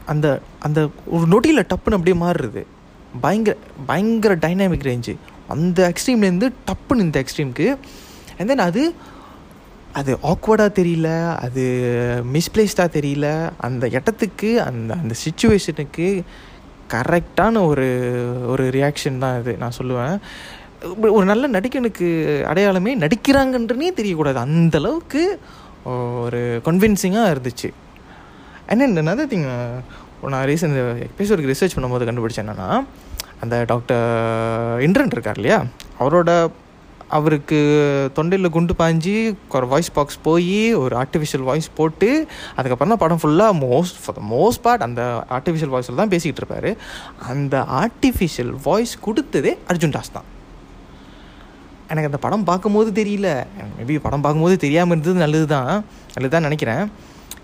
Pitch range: 130-200 Hz